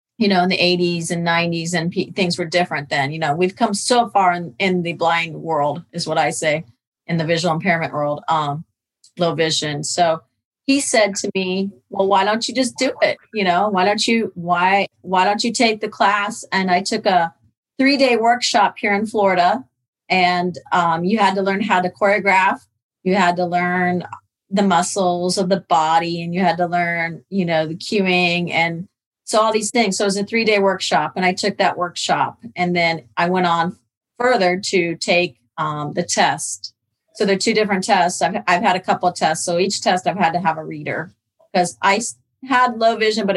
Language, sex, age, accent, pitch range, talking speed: English, female, 30-49, American, 165-200 Hz, 210 wpm